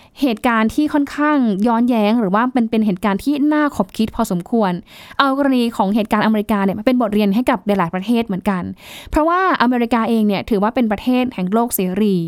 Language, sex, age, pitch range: Thai, female, 10-29, 200-255 Hz